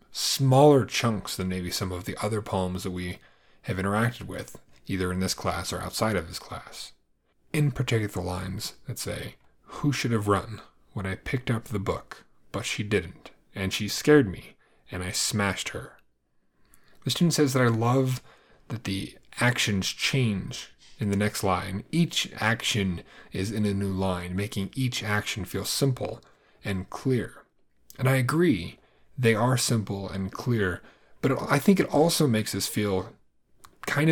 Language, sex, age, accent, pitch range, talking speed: English, male, 30-49, American, 95-125 Hz, 165 wpm